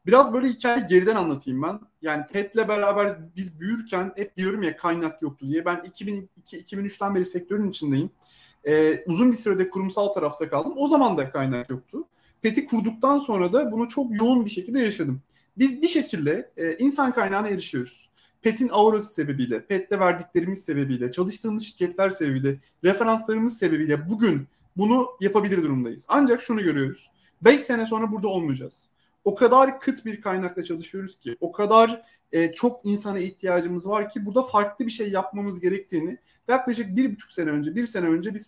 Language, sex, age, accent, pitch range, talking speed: Turkish, male, 30-49, native, 165-230 Hz, 160 wpm